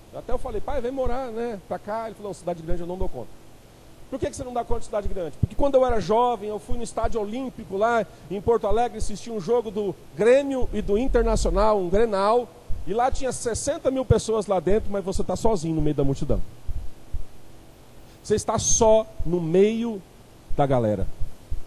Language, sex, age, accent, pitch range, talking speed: Portuguese, male, 40-59, Brazilian, 170-255 Hz, 200 wpm